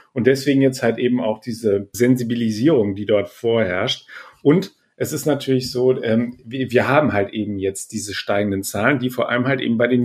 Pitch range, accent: 110-130 Hz, German